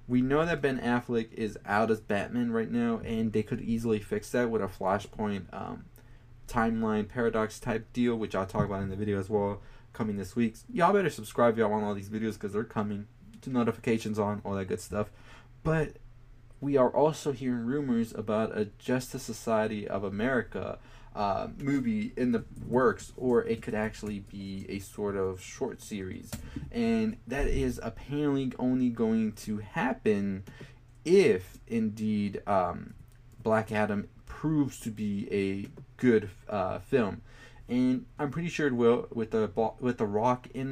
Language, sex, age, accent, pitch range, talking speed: English, male, 20-39, American, 105-120 Hz, 165 wpm